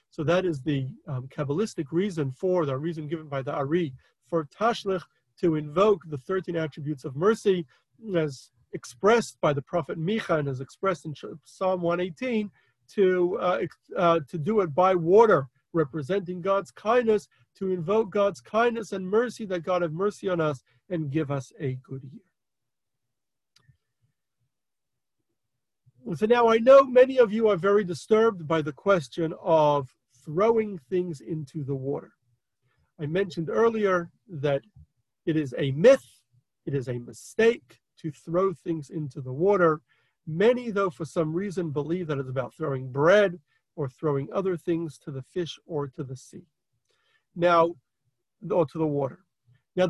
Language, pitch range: English, 145-195 Hz